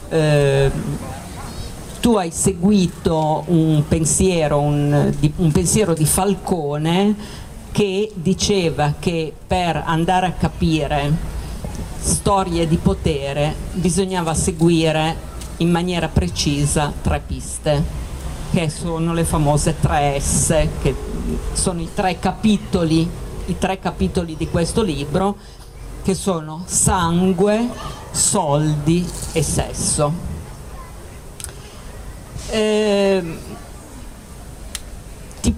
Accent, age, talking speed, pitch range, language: native, 50-69, 90 wpm, 150-190 Hz, Italian